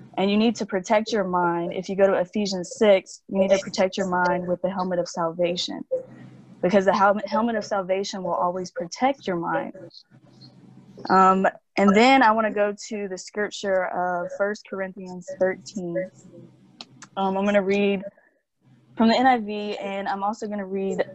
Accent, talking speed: American, 175 wpm